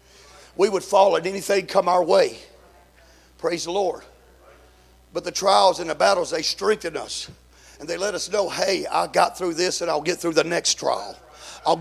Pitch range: 175-235 Hz